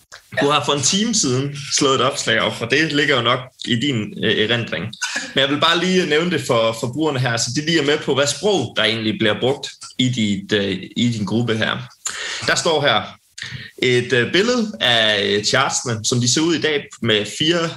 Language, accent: Danish, native